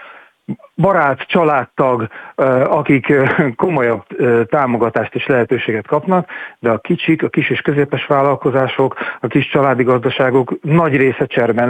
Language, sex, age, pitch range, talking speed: Hungarian, male, 40-59, 120-150 Hz, 120 wpm